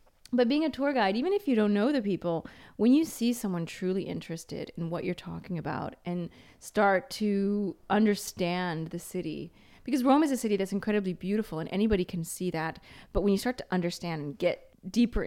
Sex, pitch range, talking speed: female, 170-225 Hz, 200 wpm